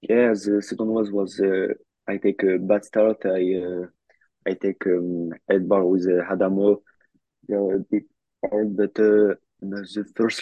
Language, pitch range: English, 90-100 Hz